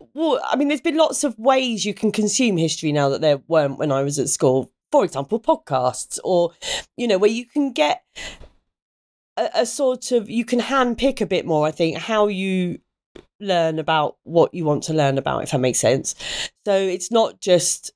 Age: 30-49